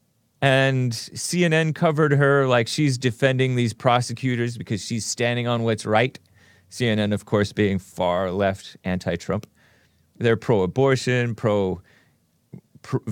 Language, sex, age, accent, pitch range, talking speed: English, male, 30-49, American, 105-135 Hz, 120 wpm